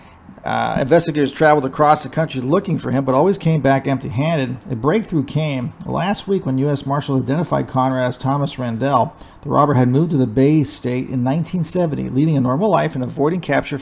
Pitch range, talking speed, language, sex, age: 130-155 Hz, 190 wpm, English, male, 40-59